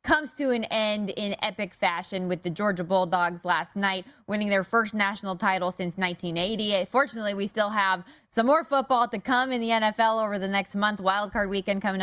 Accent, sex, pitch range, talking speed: American, female, 190-245 Hz, 195 wpm